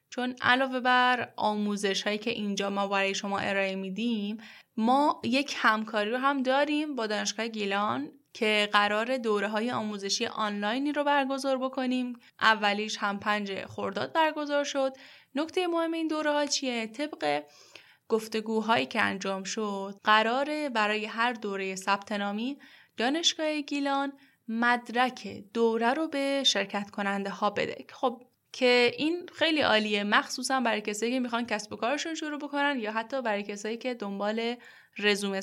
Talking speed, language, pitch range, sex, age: 145 wpm, Persian, 210-280 Hz, female, 10-29